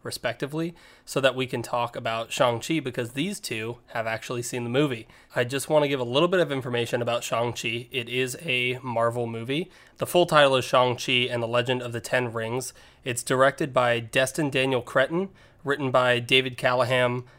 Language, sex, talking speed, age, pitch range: English, male, 190 wpm, 20-39, 125-150 Hz